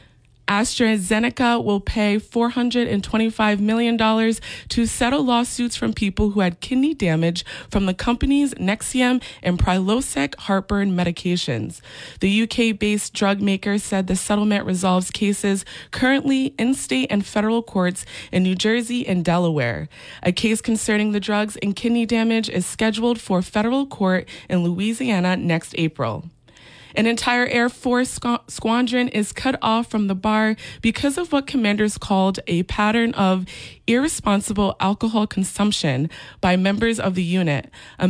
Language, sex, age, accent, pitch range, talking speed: English, female, 20-39, American, 185-235 Hz, 135 wpm